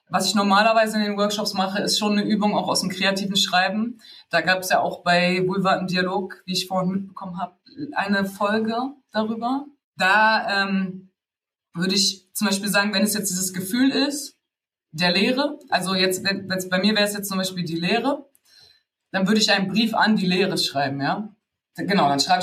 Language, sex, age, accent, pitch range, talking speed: German, female, 20-39, German, 170-210 Hz, 200 wpm